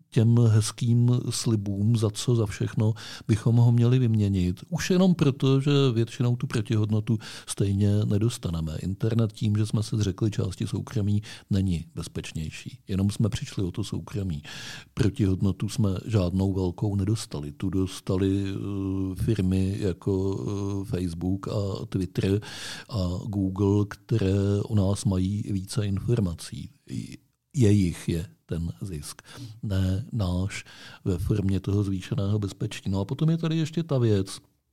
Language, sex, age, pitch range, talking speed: Czech, male, 50-69, 100-125 Hz, 130 wpm